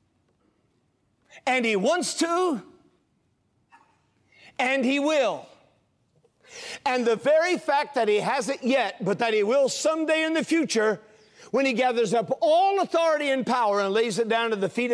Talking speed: 155 wpm